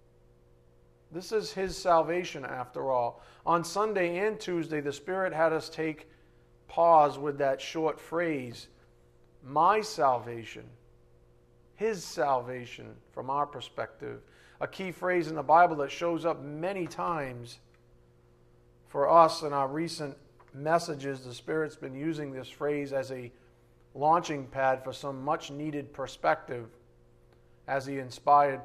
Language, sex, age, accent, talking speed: English, male, 40-59, American, 130 wpm